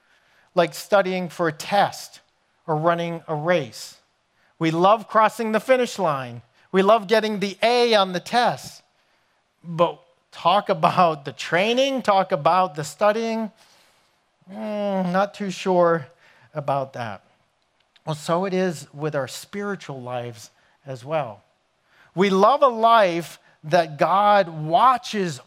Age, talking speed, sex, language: 40-59, 130 wpm, male, English